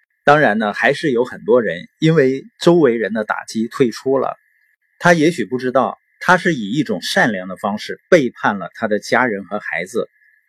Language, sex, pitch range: Chinese, male, 125-185 Hz